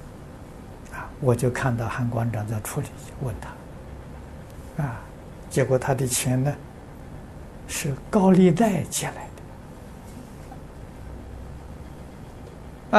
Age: 60-79